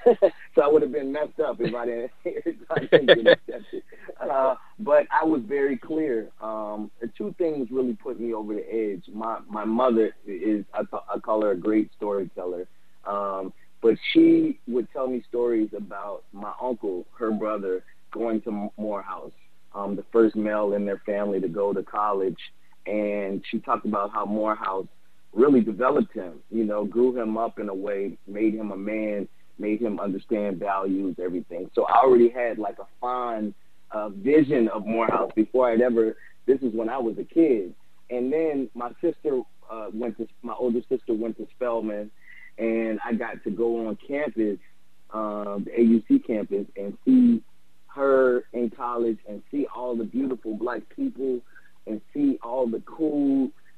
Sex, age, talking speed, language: male, 30-49, 175 wpm, English